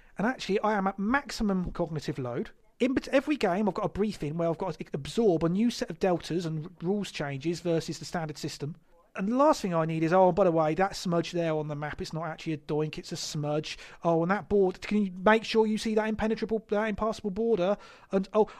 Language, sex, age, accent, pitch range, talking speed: English, male, 30-49, British, 160-210 Hz, 230 wpm